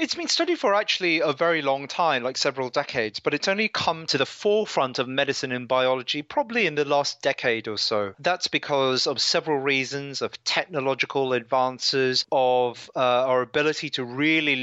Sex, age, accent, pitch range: male, 30-49, British, 125-150 Hz